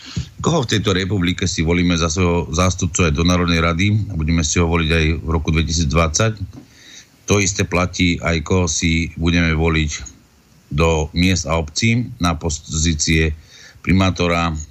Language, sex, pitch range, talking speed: Slovak, male, 80-95 Hz, 145 wpm